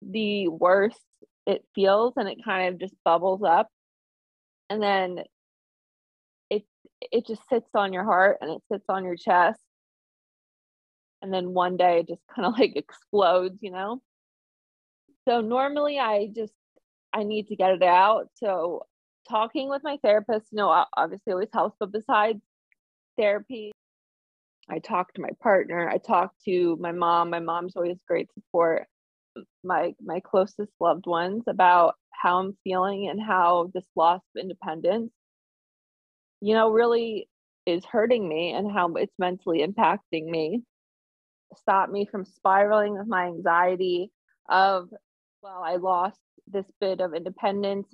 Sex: female